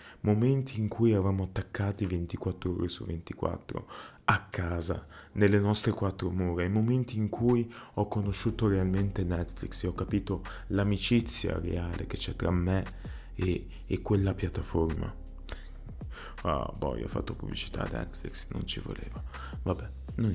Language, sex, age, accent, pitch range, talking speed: Italian, male, 20-39, native, 90-110 Hz, 145 wpm